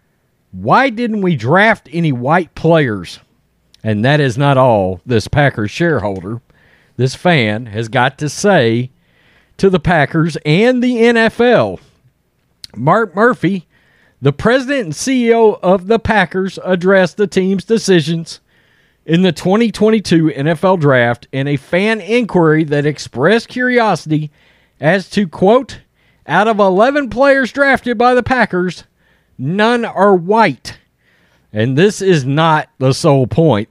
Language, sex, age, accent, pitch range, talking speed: English, male, 40-59, American, 140-215 Hz, 130 wpm